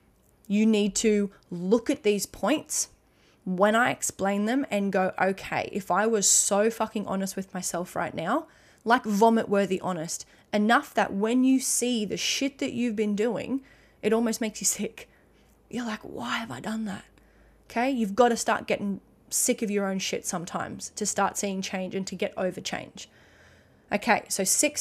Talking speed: 180 wpm